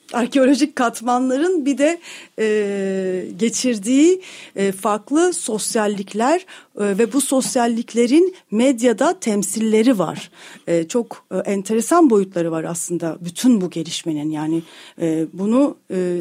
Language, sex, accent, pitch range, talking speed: Turkish, female, native, 190-255 Hz, 110 wpm